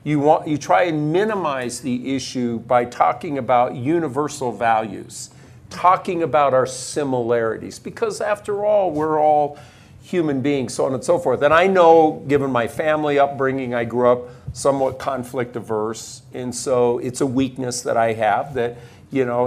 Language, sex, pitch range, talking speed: English, male, 125-150 Hz, 160 wpm